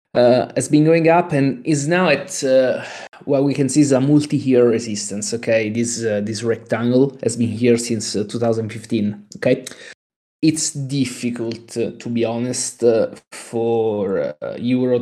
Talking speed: 165 wpm